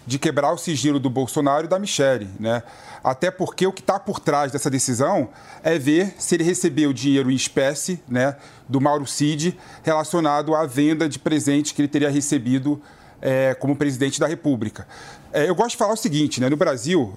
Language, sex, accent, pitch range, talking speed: Portuguese, male, Brazilian, 135-180 Hz, 185 wpm